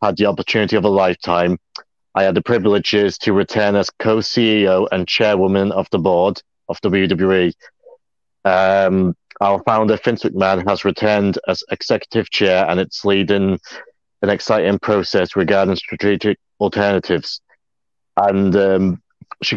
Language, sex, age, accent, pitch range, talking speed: English, male, 30-49, British, 95-115 Hz, 130 wpm